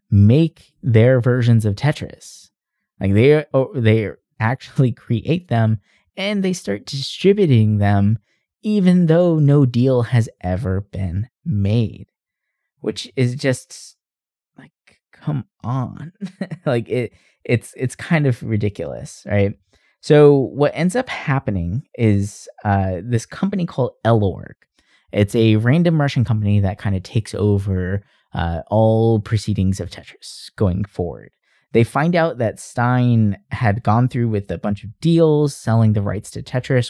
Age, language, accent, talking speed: 20-39, English, American, 135 wpm